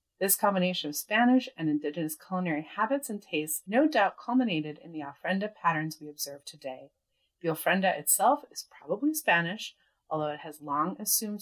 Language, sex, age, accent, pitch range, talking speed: English, female, 30-49, American, 160-225 Hz, 165 wpm